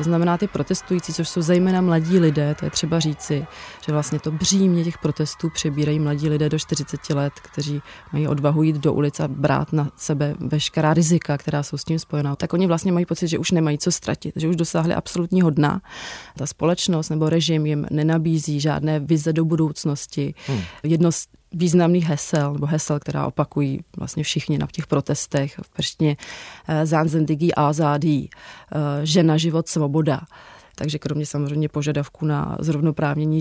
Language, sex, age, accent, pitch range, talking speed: Czech, female, 30-49, native, 145-165 Hz, 165 wpm